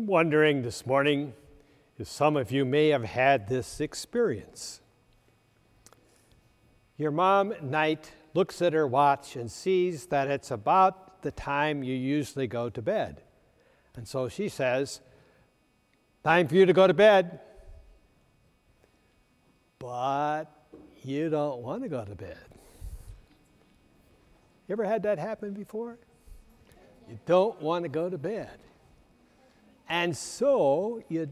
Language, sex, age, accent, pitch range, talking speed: English, male, 60-79, American, 135-175 Hz, 130 wpm